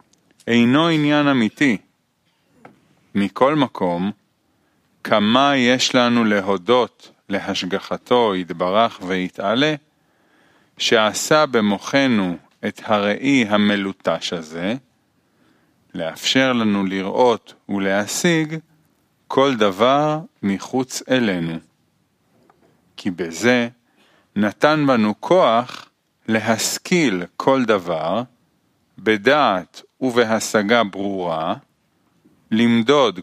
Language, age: Hebrew, 40-59